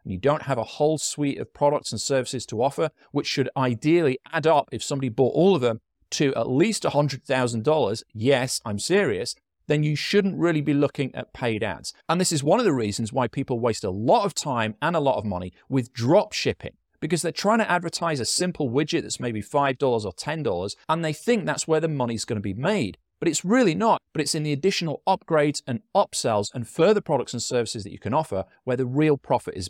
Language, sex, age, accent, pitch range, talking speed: English, male, 30-49, British, 115-160 Hz, 225 wpm